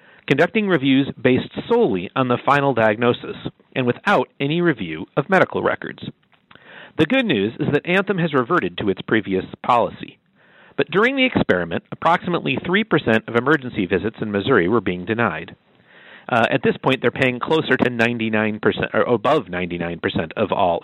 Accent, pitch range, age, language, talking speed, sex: American, 110-170 Hz, 50-69, English, 160 wpm, male